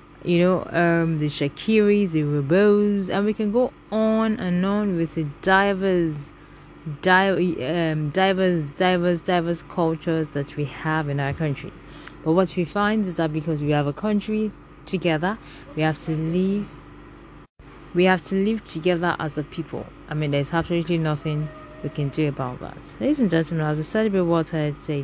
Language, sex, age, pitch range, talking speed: English, female, 20-39, 150-185 Hz, 170 wpm